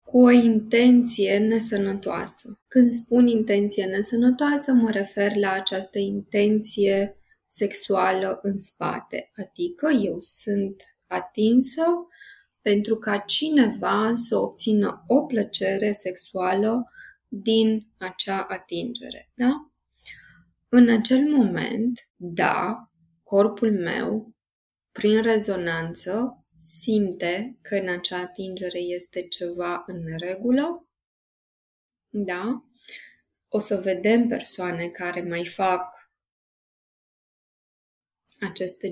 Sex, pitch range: female, 185-240 Hz